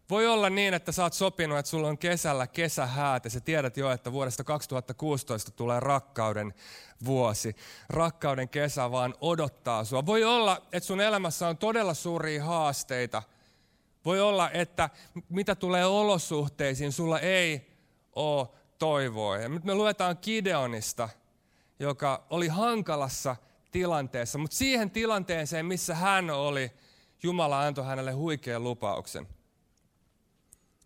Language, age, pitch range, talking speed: Finnish, 30-49, 130-175 Hz, 125 wpm